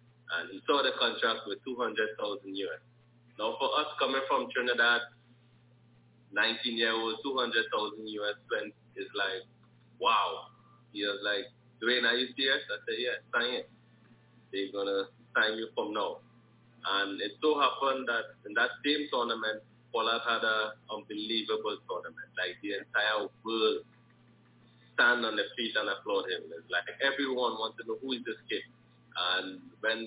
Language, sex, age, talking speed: English, male, 20-39, 155 wpm